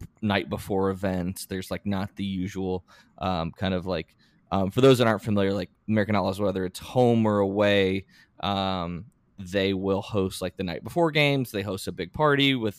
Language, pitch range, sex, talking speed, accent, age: English, 95-115 Hz, male, 190 wpm, American, 20-39